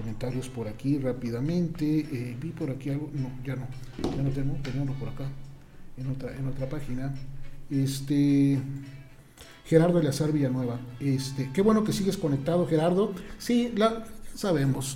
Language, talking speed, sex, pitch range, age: Spanish, 150 wpm, male, 135-165 Hz, 40-59